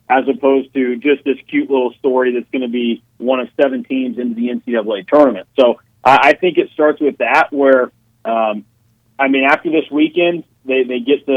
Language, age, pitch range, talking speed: English, 40-59, 120-140 Hz, 200 wpm